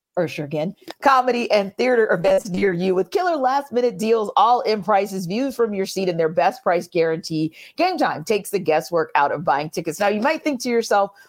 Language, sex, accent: English, female, American